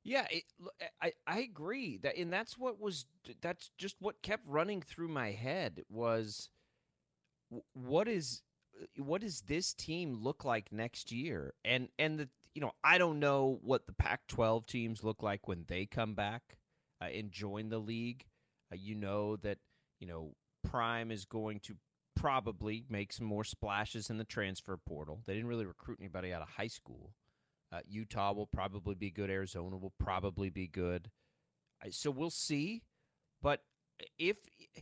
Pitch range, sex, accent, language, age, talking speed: 100-155 Hz, male, American, English, 30-49, 165 wpm